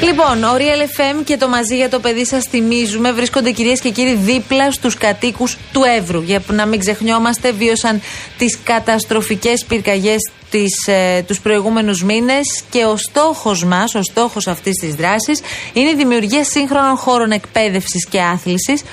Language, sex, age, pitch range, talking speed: Greek, female, 30-49, 180-245 Hz, 155 wpm